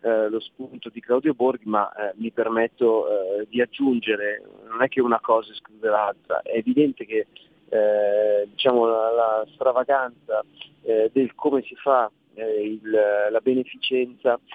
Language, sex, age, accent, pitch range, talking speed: Italian, male, 30-49, native, 100-125 Hz, 155 wpm